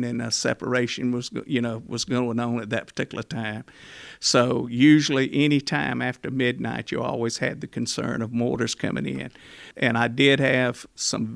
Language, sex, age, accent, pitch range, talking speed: English, male, 50-69, American, 115-125 Hz, 165 wpm